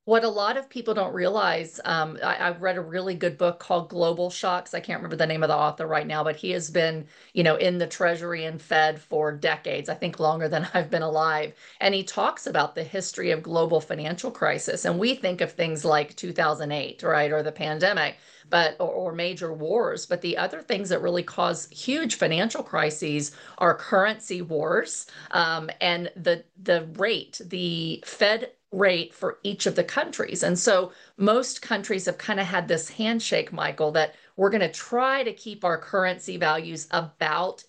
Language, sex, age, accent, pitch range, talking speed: English, female, 40-59, American, 160-190 Hz, 195 wpm